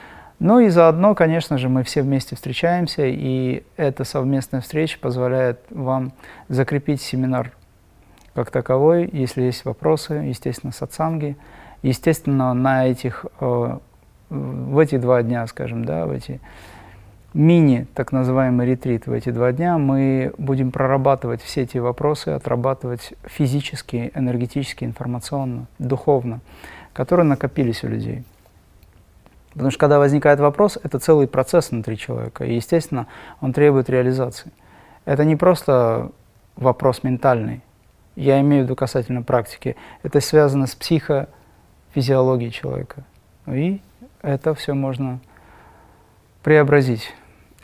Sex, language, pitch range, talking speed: male, Russian, 125-145 Hz, 115 wpm